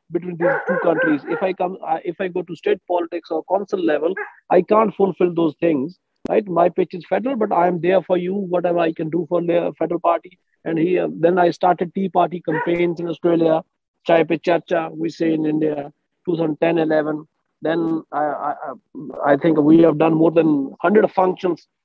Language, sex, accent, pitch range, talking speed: English, male, Indian, 150-170 Hz, 195 wpm